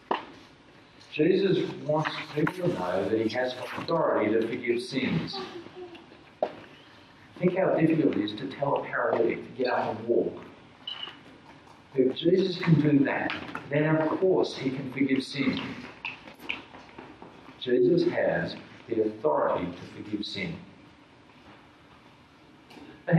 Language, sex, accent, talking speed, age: English, male, American, 120 wpm, 50-69